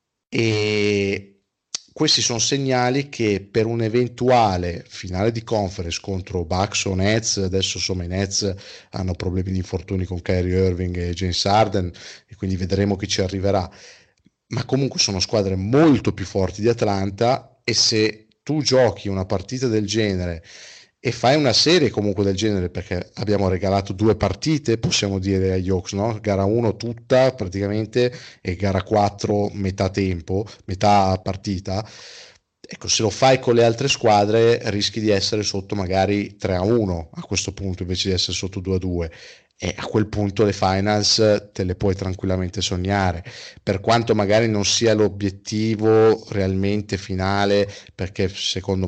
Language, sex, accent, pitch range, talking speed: Italian, male, native, 95-110 Hz, 150 wpm